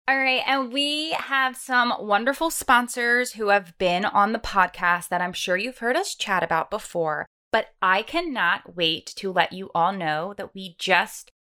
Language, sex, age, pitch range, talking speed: English, female, 20-39, 175-255 Hz, 185 wpm